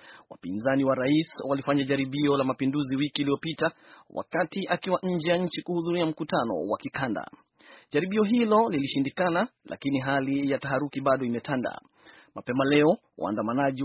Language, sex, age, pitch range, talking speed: Swahili, male, 30-49, 135-170 Hz, 130 wpm